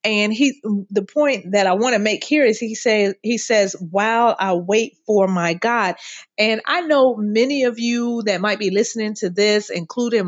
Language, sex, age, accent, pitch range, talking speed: English, female, 30-49, American, 190-240 Hz, 200 wpm